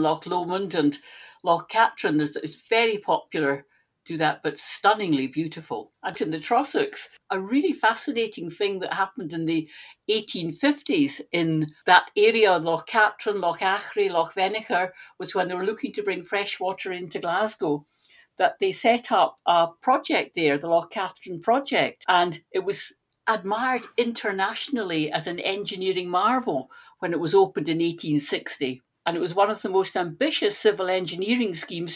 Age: 60-79